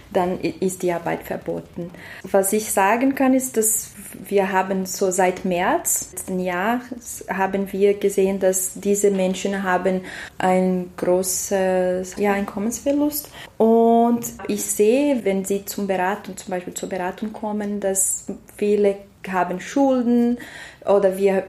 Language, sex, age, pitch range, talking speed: German, female, 20-39, 185-215 Hz, 130 wpm